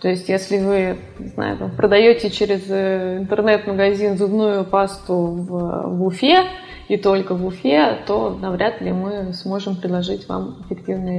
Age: 20-39